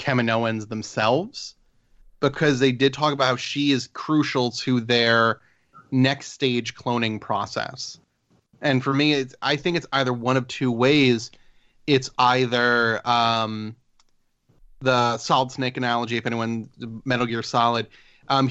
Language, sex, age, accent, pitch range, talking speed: English, male, 30-49, American, 120-135 Hz, 135 wpm